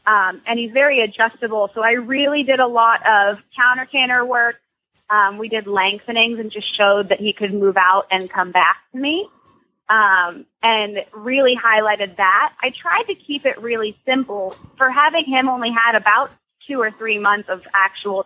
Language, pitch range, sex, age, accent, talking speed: English, 195-250 Hz, female, 20-39, American, 180 wpm